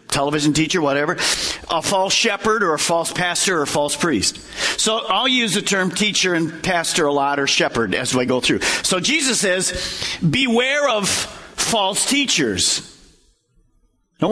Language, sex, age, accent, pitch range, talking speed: English, male, 50-69, American, 165-255 Hz, 160 wpm